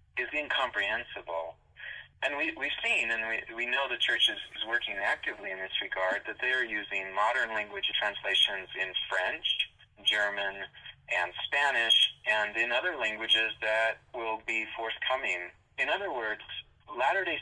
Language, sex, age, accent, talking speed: English, male, 30-49, American, 150 wpm